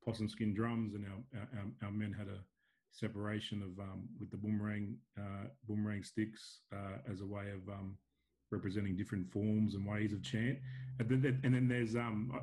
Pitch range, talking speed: 105-120 Hz, 175 wpm